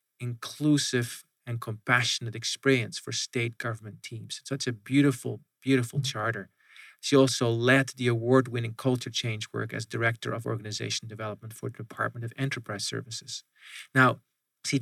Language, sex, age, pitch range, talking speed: English, male, 40-59, 115-135 Hz, 140 wpm